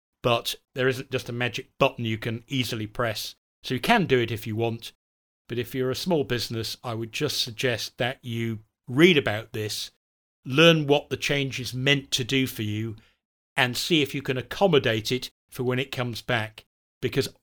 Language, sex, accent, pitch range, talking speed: English, male, British, 110-140 Hz, 195 wpm